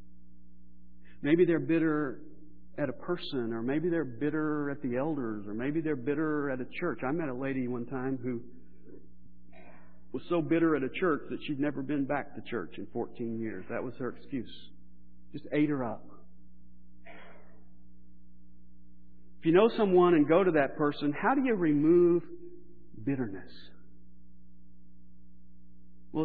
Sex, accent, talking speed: male, American, 150 wpm